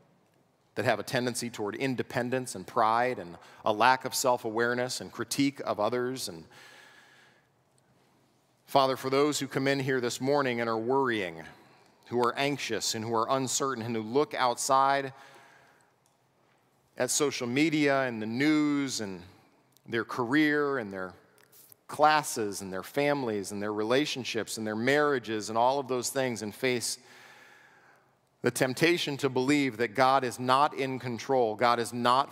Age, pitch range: 40-59, 115-140 Hz